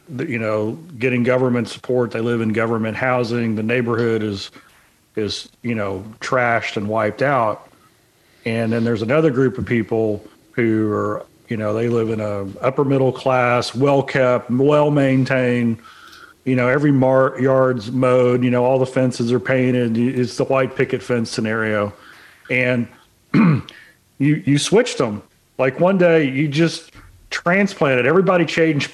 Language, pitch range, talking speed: English, 120-140 Hz, 150 wpm